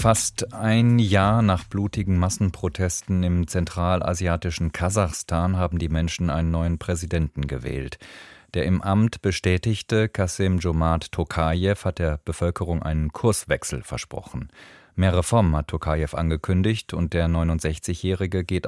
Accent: German